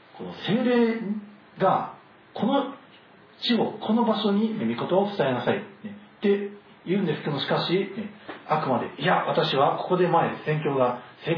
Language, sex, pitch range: Japanese, male, 145-210 Hz